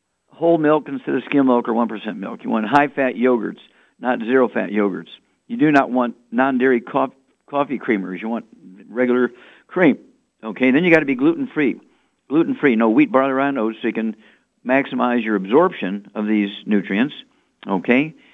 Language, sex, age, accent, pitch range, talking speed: English, male, 50-69, American, 110-140 Hz, 170 wpm